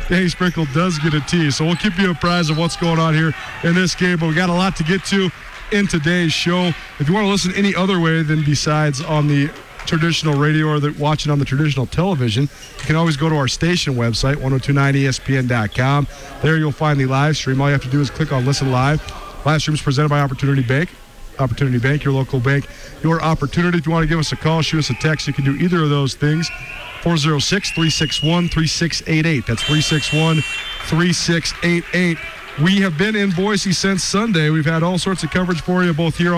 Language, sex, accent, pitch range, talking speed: English, male, American, 145-175 Hz, 210 wpm